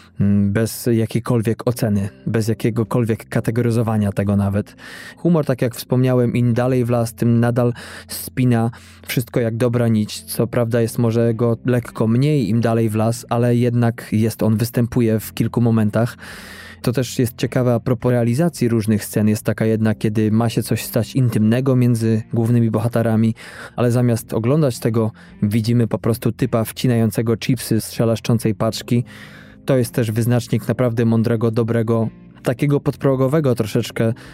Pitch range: 110-125 Hz